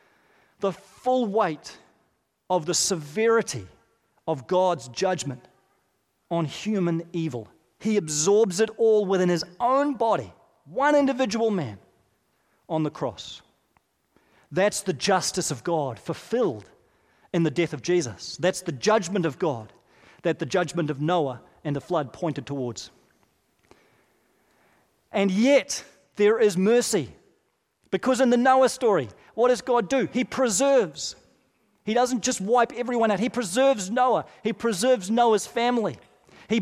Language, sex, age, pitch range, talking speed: English, male, 40-59, 170-245 Hz, 135 wpm